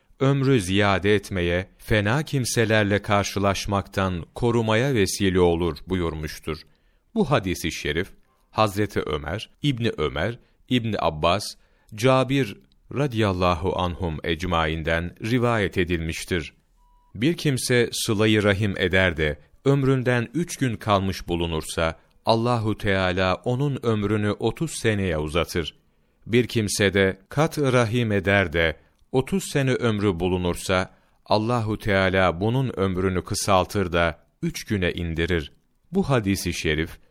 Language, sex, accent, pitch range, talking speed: Turkish, male, native, 95-125 Hz, 110 wpm